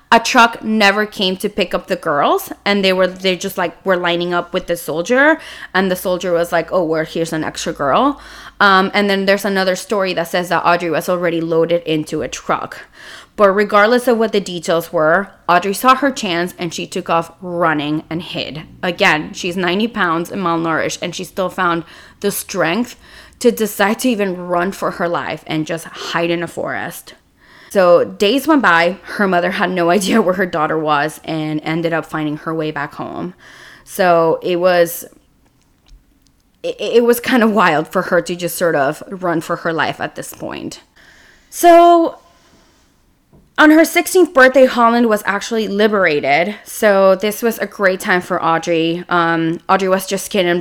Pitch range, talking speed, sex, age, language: 170-210 Hz, 185 wpm, female, 20-39, English